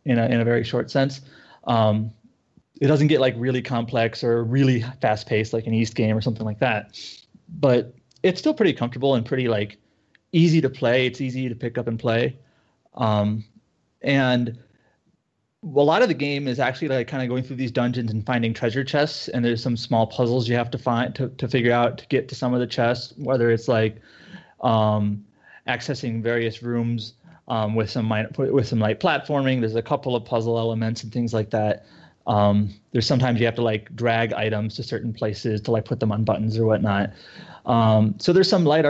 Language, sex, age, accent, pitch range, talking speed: English, male, 30-49, American, 115-135 Hz, 205 wpm